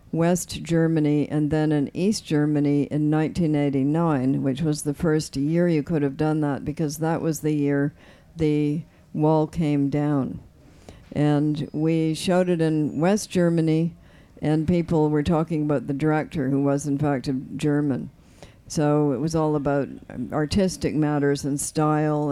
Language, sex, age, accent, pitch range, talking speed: English, female, 60-79, American, 145-160 Hz, 155 wpm